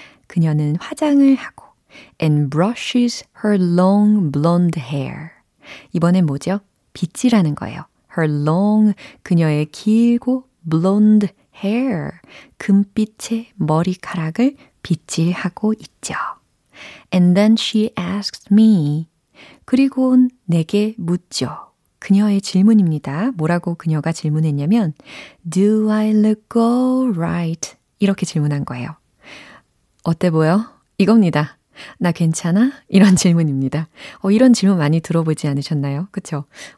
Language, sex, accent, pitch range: Korean, female, native, 160-215 Hz